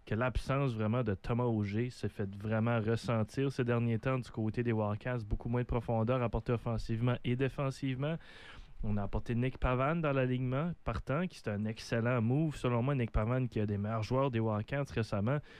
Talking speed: 195 wpm